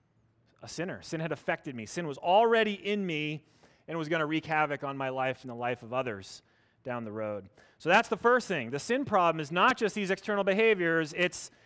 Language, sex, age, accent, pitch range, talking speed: English, male, 30-49, American, 145-210 Hz, 220 wpm